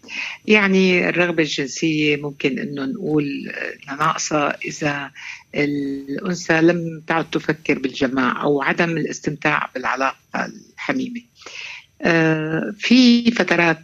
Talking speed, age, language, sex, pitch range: 85 wpm, 60-79, Arabic, female, 140-185 Hz